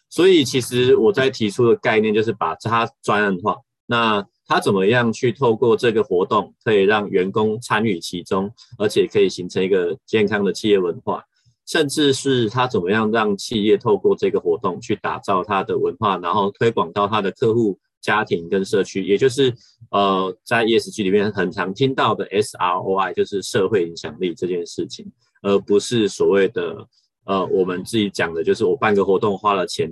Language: Chinese